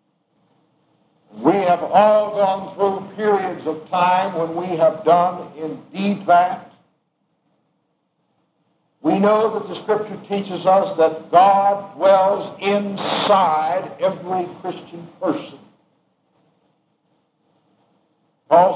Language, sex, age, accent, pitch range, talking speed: English, male, 60-79, American, 175-225 Hz, 95 wpm